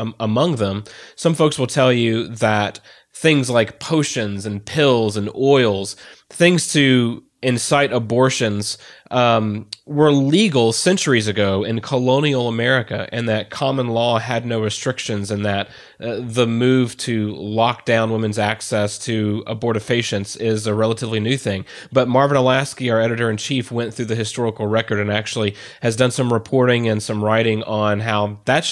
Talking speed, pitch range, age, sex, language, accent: 155 wpm, 105-125 Hz, 30-49, male, English, American